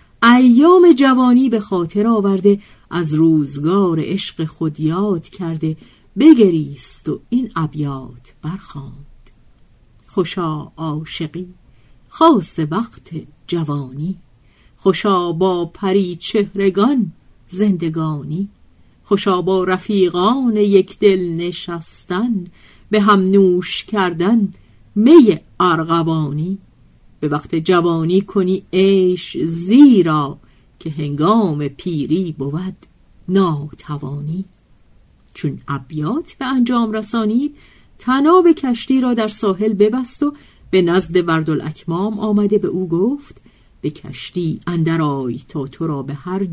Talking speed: 100 wpm